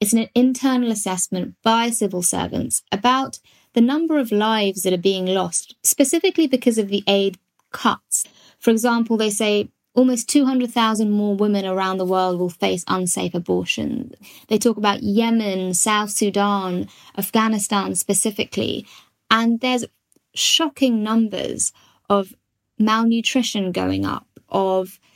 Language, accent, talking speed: English, British, 130 wpm